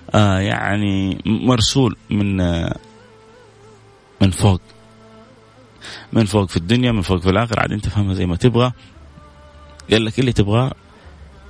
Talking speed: 130 wpm